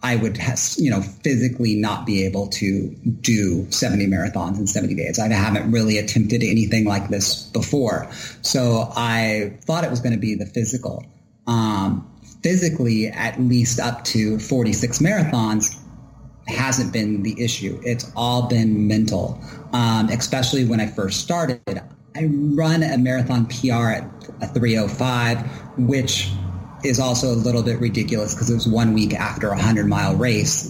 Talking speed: 155 wpm